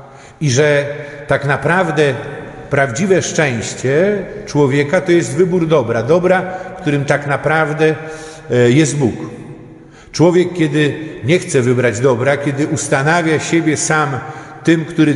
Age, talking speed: 50-69, 115 wpm